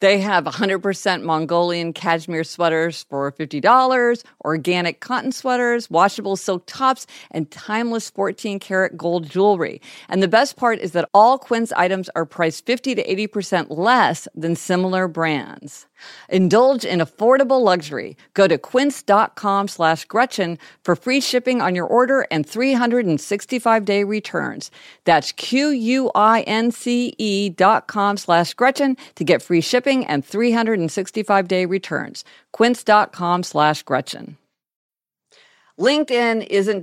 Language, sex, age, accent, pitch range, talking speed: English, female, 50-69, American, 165-230 Hz, 150 wpm